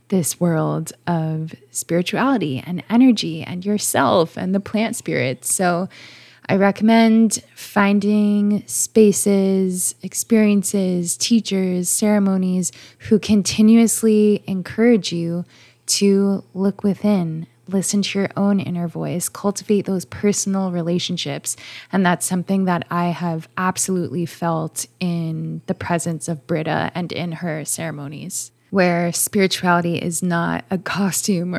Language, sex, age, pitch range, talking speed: English, female, 20-39, 170-200 Hz, 115 wpm